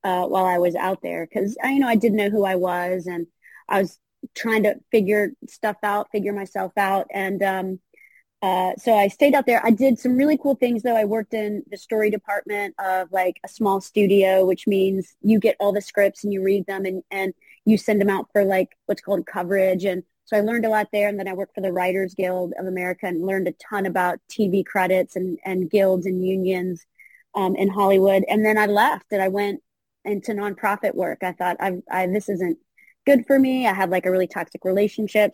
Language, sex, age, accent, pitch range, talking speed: English, female, 30-49, American, 190-215 Hz, 225 wpm